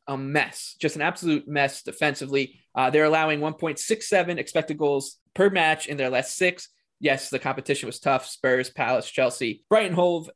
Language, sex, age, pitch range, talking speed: English, male, 20-39, 145-175 Hz, 170 wpm